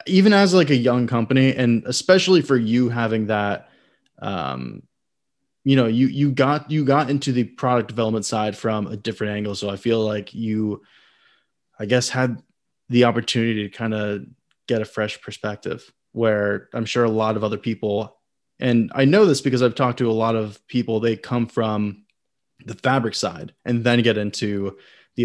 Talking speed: 180 wpm